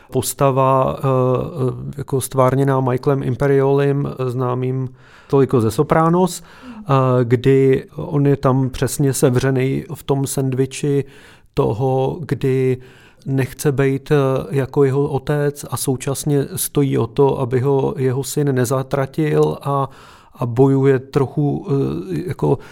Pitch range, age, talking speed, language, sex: 130-140 Hz, 30-49, 105 wpm, Czech, male